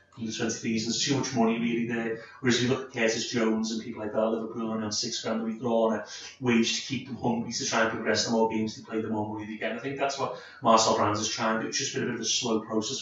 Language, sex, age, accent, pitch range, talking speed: English, male, 30-49, British, 110-135 Hz, 315 wpm